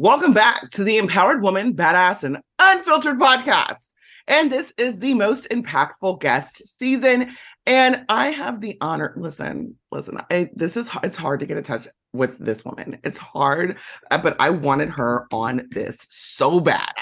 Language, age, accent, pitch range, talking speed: English, 30-49, American, 140-220 Hz, 165 wpm